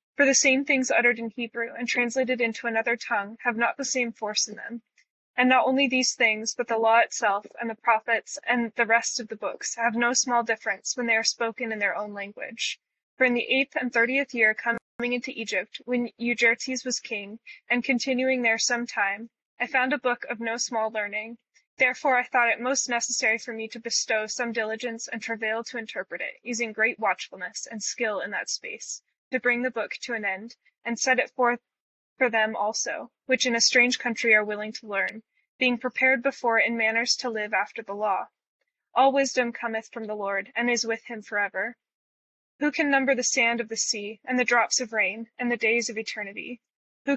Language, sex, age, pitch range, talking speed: English, female, 10-29, 225-255 Hz, 210 wpm